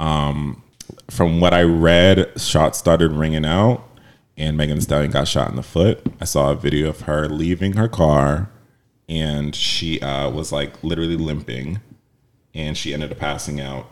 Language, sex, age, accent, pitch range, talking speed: English, male, 30-49, American, 75-90 Hz, 175 wpm